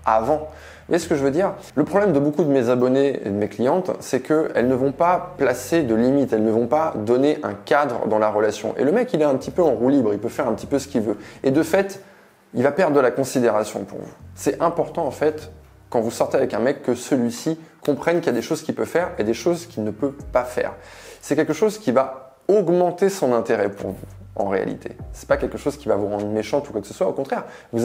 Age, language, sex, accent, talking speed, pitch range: 20-39, French, male, French, 270 wpm, 110-150 Hz